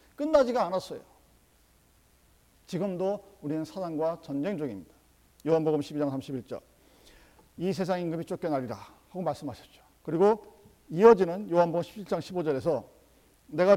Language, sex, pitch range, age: Korean, male, 150-230 Hz, 50-69